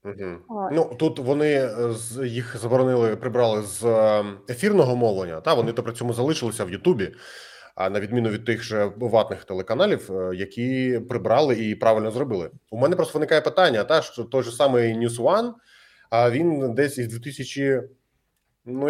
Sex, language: male, Ukrainian